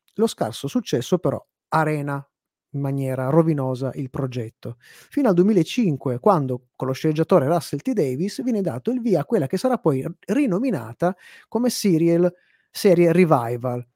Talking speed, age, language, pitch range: 145 wpm, 30-49, Italian, 145-200 Hz